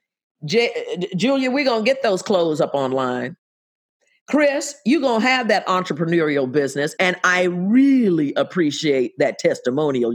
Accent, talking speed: American, 140 wpm